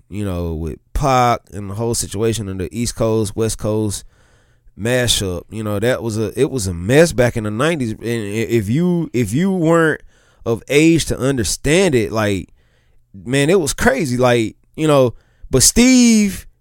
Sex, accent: male, American